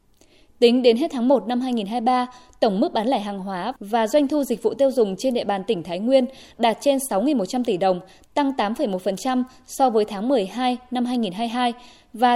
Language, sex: Vietnamese, female